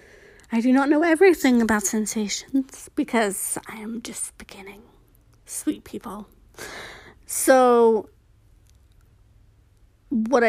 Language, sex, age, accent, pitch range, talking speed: English, female, 30-49, American, 195-280 Hz, 90 wpm